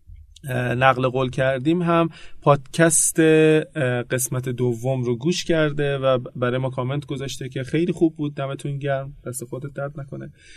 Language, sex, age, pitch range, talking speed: Persian, male, 30-49, 125-155 Hz, 140 wpm